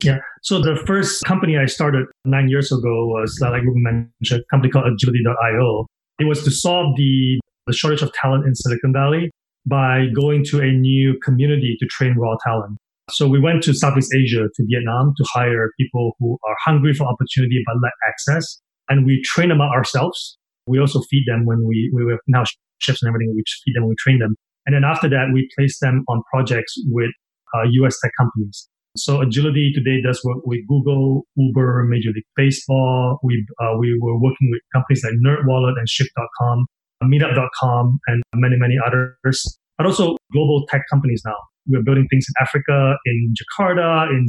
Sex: male